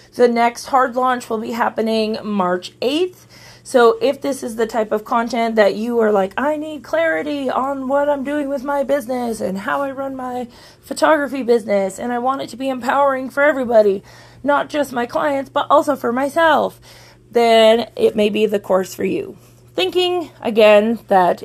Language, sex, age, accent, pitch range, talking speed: English, female, 30-49, American, 200-280 Hz, 185 wpm